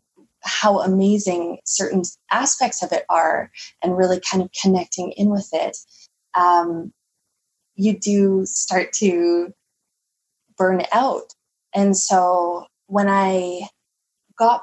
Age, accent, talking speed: 20-39, American, 110 wpm